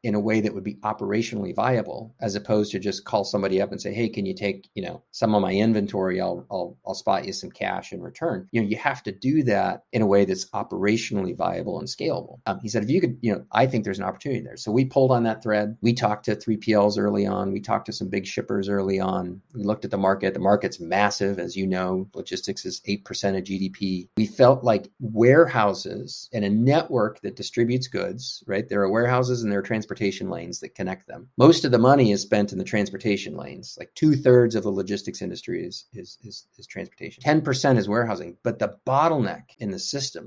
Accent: American